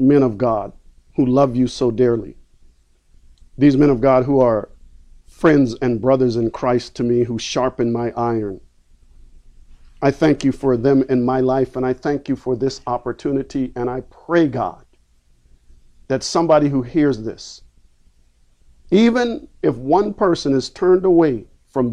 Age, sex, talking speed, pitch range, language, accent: 50-69, male, 155 wpm, 110-150 Hz, English, American